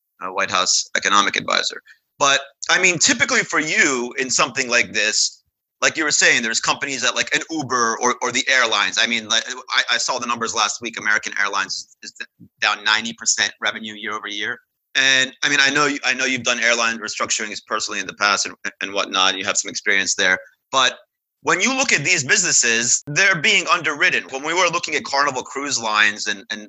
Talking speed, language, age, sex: 210 wpm, English, 30-49, male